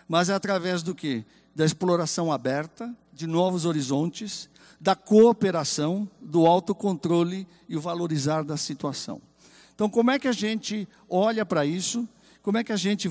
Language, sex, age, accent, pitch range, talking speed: Portuguese, male, 50-69, Brazilian, 150-195 Hz, 155 wpm